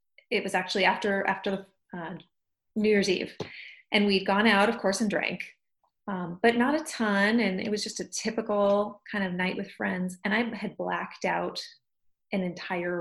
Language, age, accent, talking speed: English, 30-49, American, 190 wpm